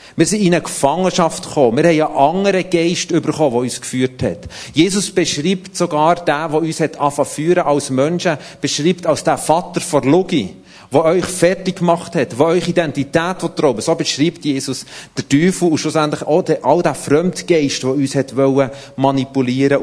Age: 40-59